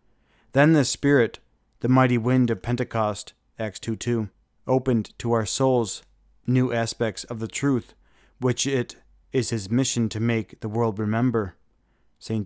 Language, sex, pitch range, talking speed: English, male, 115-130 Hz, 145 wpm